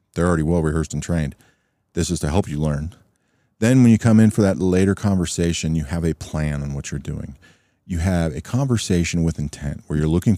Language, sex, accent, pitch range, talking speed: English, male, American, 80-105 Hz, 220 wpm